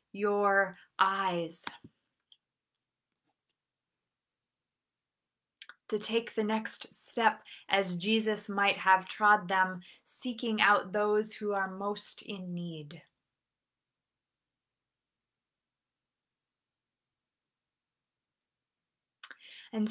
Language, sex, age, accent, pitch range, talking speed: English, female, 20-39, American, 195-220 Hz, 65 wpm